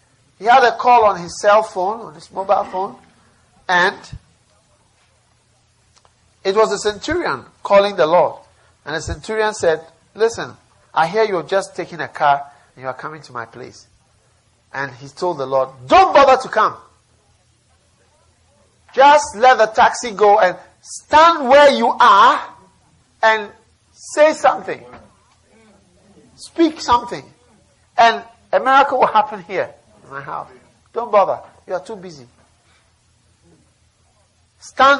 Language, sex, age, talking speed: English, male, 50-69, 135 wpm